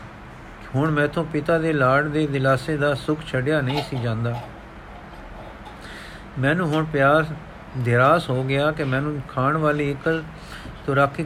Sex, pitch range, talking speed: male, 135-160 Hz, 135 wpm